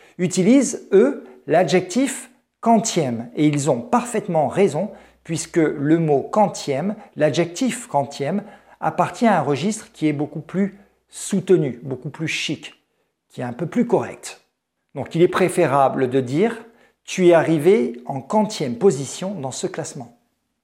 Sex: male